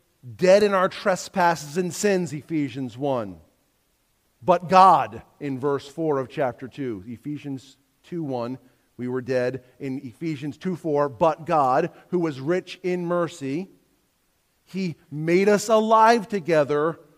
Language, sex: English, male